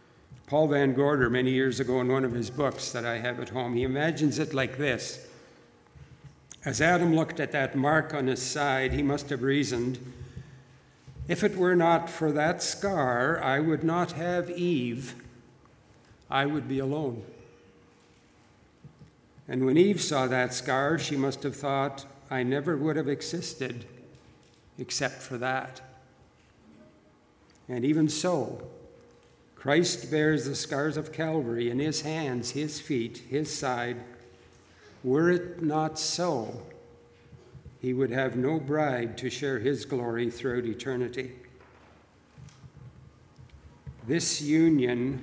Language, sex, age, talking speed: English, male, 60-79, 135 wpm